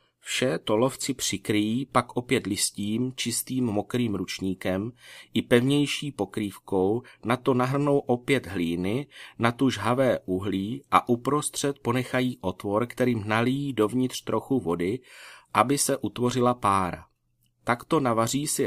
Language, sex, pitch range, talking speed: Czech, male, 100-130 Hz, 120 wpm